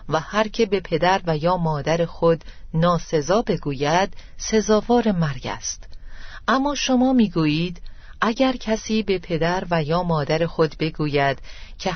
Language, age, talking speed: Persian, 40-59, 140 wpm